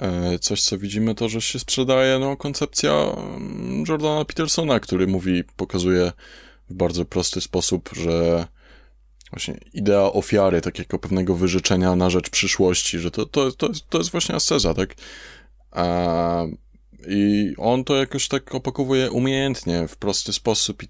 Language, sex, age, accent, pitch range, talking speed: Polish, male, 20-39, native, 85-115 Hz, 140 wpm